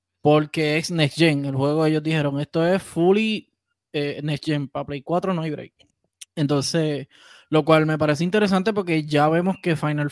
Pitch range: 145-165 Hz